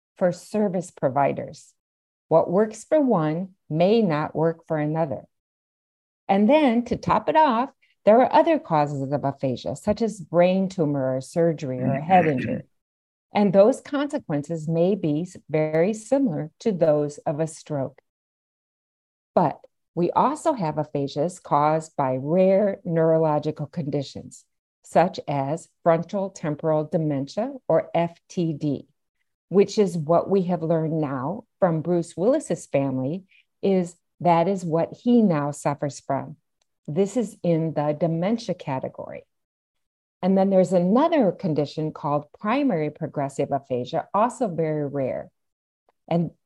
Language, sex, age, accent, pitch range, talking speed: English, female, 50-69, American, 150-195 Hz, 130 wpm